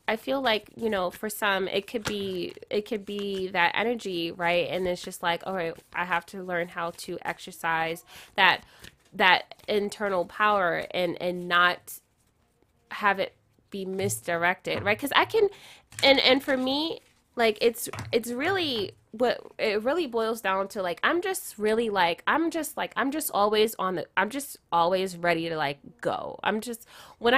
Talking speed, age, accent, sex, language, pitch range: 180 wpm, 20-39, American, female, English, 190-255 Hz